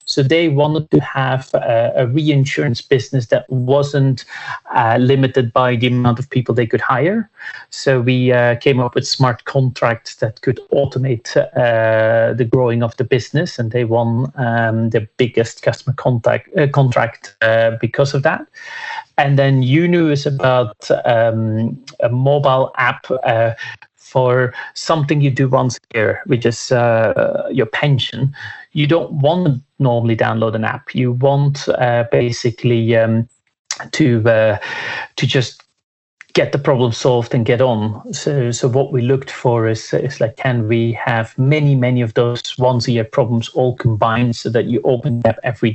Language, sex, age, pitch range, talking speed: English, male, 30-49, 115-140 Hz, 165 wpm